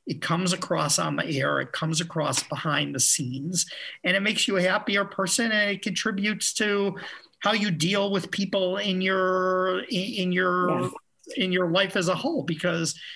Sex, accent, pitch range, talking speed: male, American, 150-190 Hz, 180 wpm